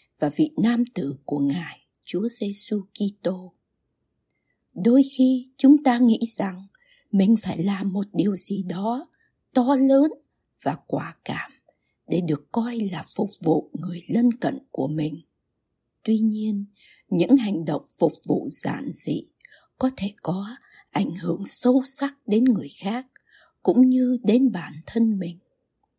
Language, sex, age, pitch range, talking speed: Vietnamese, female, 60-79, 190-250 Hz, 145 wpm